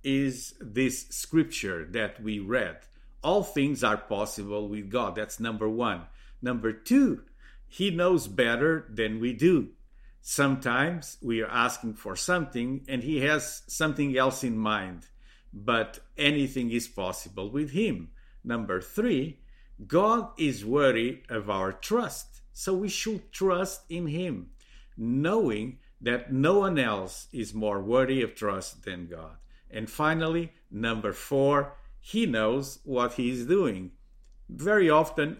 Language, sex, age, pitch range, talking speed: English, male, 50-69, 110-150 Hz, 135 wpm